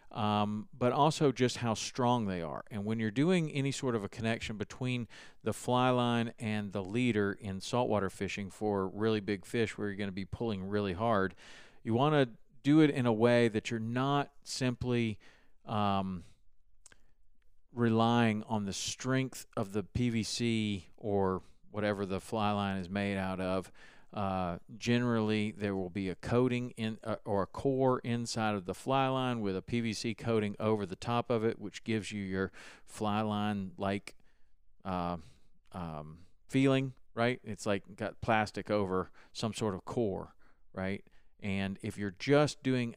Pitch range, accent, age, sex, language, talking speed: 100-120 Hz, American, 40-59, male, English, 170 wpm